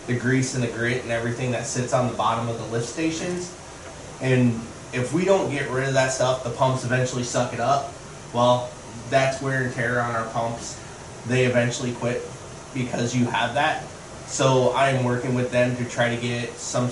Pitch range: 115-130 Hz